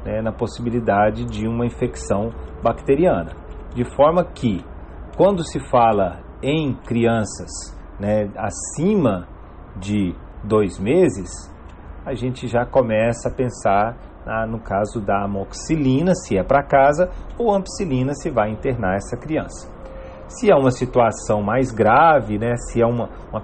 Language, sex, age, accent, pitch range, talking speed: Portuguese, male, 40-59, Brazilian, 100-130 Hz, 135 wpm